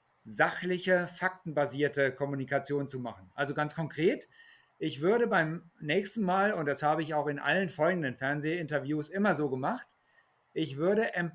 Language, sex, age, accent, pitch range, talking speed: German, male, 50-69, German, 150-190 Hz, 145 wpm